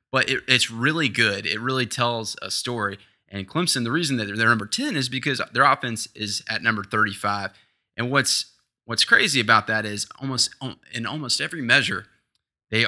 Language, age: English, 20-39